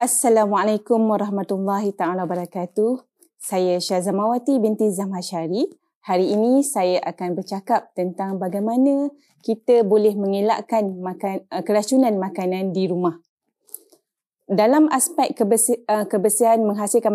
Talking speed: 100 wpm